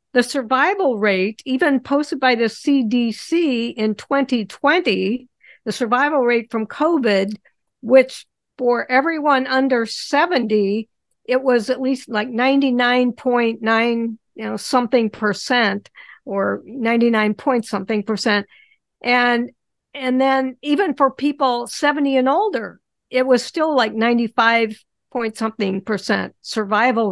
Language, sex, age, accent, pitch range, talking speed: English, female, 50-69, American, 210-260 Hz, 115 wpm